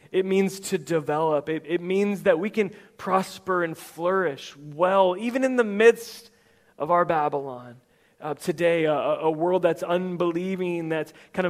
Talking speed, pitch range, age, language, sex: 155 wpm, 165-195 Hz, 30-49, English, male